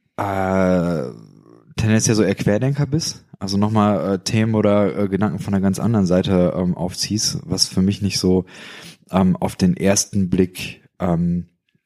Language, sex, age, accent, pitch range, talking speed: German, male, 20-39, German, 95-110 Hz, 150 wpm